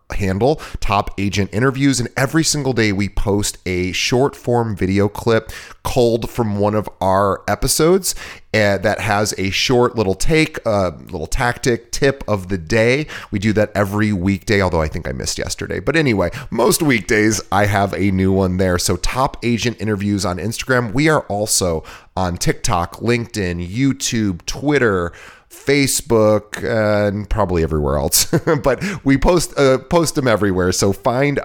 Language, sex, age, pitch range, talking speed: English, male, 30-49, 95-120 Hz, 160 wpm